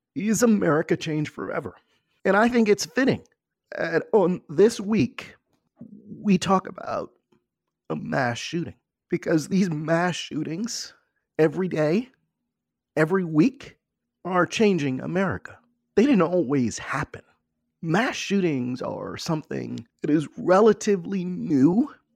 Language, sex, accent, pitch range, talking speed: English, male, American, 145-205 Hz, 115 wpm